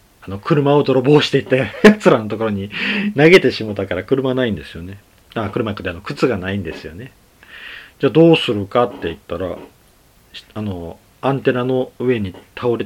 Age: 40-59